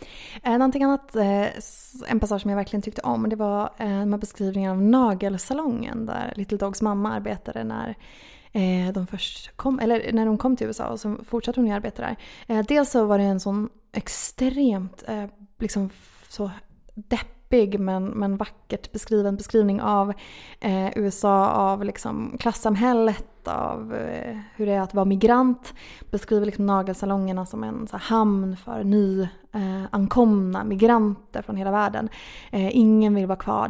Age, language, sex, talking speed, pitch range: 20-39, Swedish, female, 170 wpm, 200-225 Hz